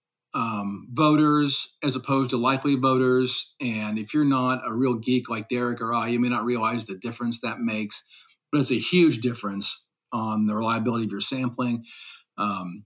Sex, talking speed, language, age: male, 175 wpm, English, 40-59